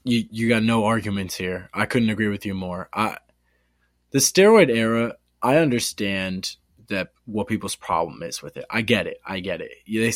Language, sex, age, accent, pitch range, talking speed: English, male, 20-39, American, 100-130 Hz, 190 wpm